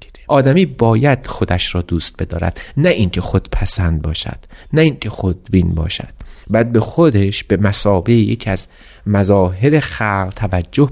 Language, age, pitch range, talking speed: Persian, 30-49, 95-130 Hz, 150 wpm